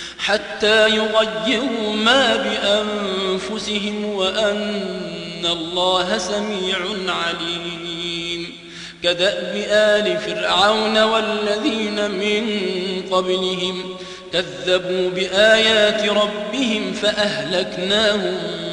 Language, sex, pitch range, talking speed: Arabic, male, 205-225 Hz, 60 wpm